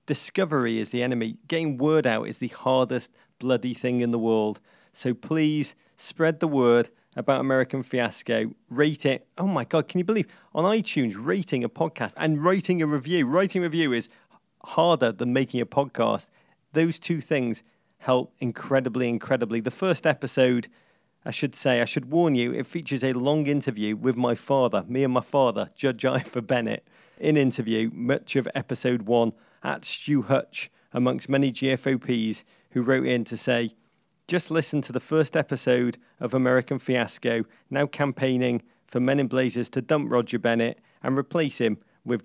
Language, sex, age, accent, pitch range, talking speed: English, male, 40-59, British, 120-155 Hz, 170 wpm